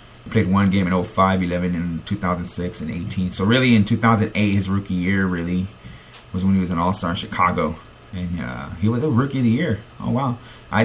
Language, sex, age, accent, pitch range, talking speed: English, male, 30-49, American, 95-120 Hz, 210 wpm